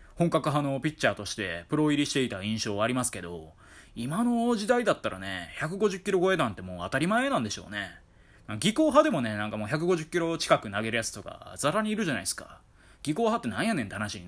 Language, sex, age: Japanese, male, 20-39